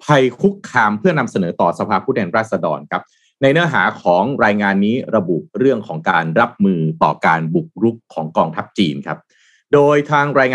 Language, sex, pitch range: Thai, male, 110-175 Hz